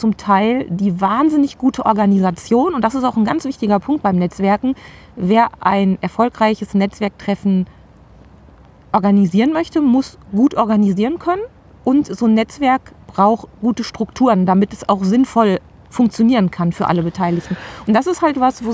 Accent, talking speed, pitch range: German, 155 wpm, 210-260 Hz